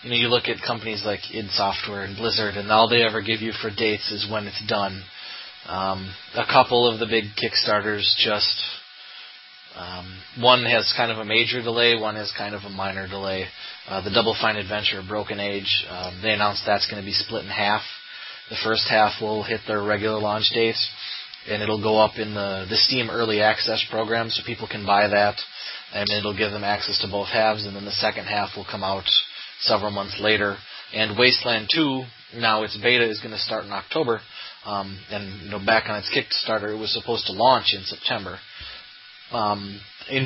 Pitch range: 100-115 Hz